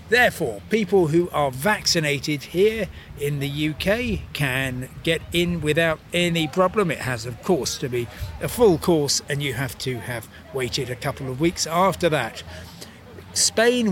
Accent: British